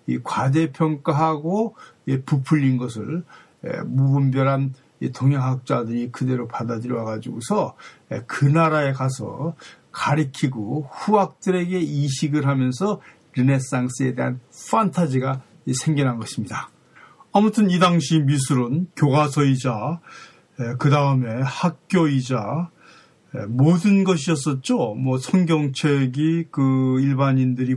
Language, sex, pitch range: Korean, male, 125-155 Hz